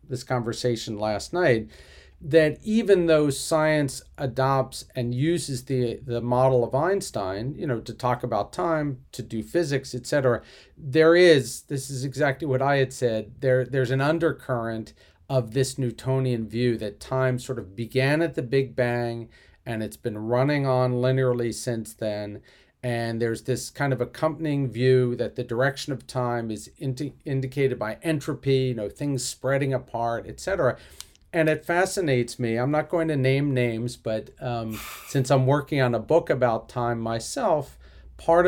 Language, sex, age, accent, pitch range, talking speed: English, male, 40-59, American, 120-145 Hz, 165 wpm